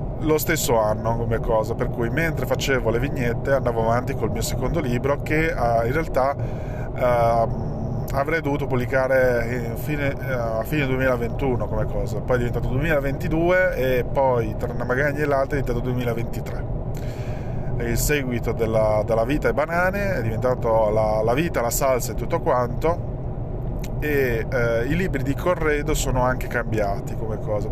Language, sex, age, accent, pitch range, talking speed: Italian, male, 20-39, native, 115-135 Hz, 160 wpm